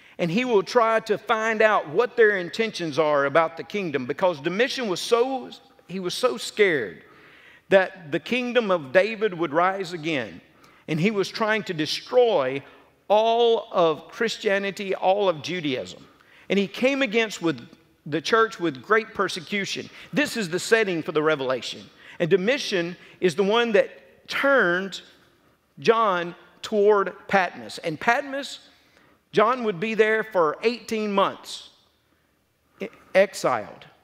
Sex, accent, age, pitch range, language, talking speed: male, American, 50-69, 165-220 Hz, English, 140 wpm